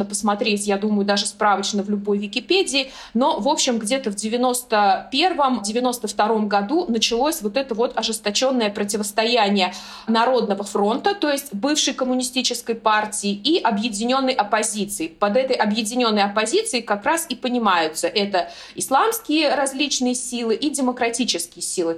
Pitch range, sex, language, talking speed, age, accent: 205-255 Hz, female, Russian, 130 wpm, 20-39, native